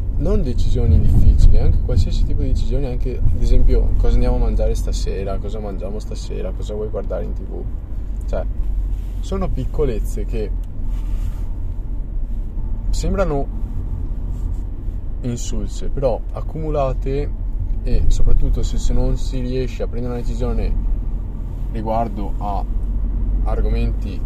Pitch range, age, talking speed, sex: 90-115 Hz, 20-39, 115 wpm, male